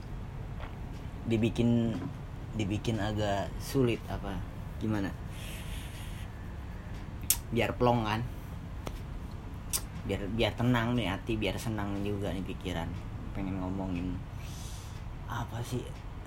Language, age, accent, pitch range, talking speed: Indonesian, 20-39, native, 95-125 Hz, 85 wpm